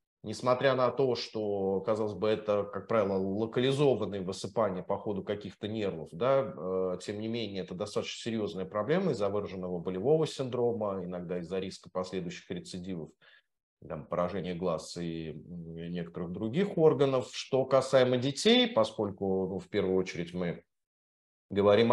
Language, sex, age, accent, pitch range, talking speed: Russian, male, 30-49, native, 95-130 Hz, 135 wpm